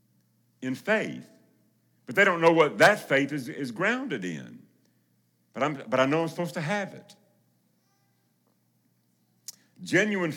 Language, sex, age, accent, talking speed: English, male, 60-79, American, 140 wpm